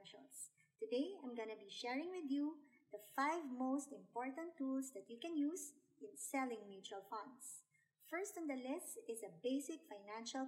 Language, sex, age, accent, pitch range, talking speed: English, male, 50-69, Filipino, 210-295 Hz, 165 wpm